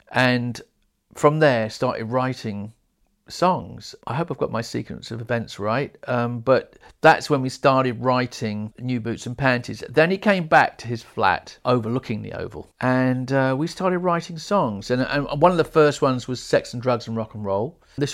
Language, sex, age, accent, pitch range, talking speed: English, male, 50-69, British, 110-135 Hz, 190 wpm